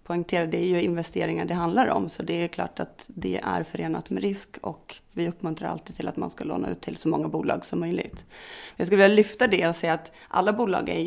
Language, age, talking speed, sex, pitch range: English, 30-49, 245 wpm, female, 165-210 Hz